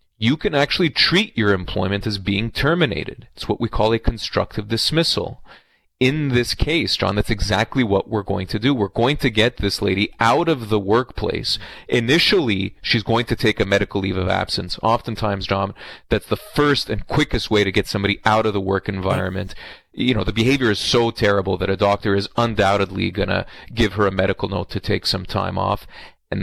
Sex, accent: male, Canadian